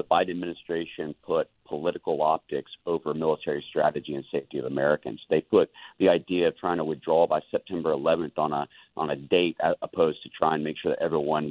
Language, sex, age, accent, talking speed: English, male, 40-59, American, 200 wpm